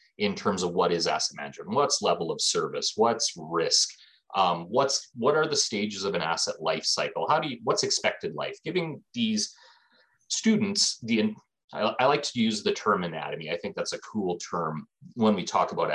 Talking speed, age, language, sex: 195 wpm, 30-49, English, male